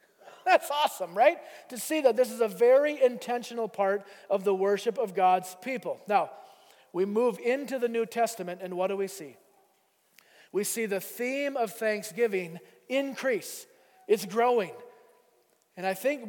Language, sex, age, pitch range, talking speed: English, male, 40-59, 185-225 Hz, 155 wpm